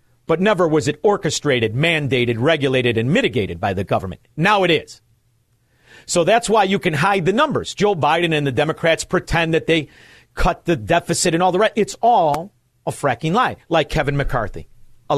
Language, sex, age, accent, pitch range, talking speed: English, male, 50-69, American, 125-195 Hz, 185 wpm